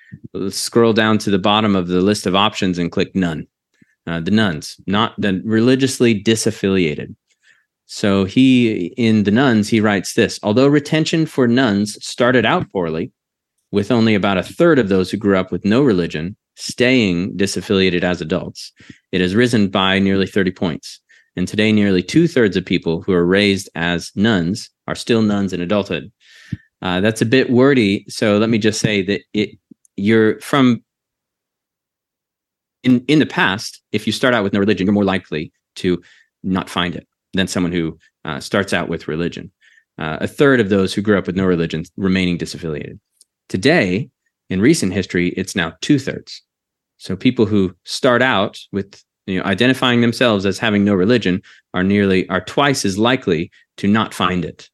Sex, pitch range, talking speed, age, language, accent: male, 90-115 Hz, 175 wpm, 30-49, English, American